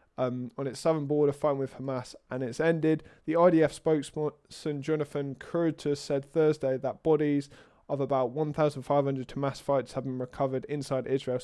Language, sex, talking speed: English, male, 170 wpm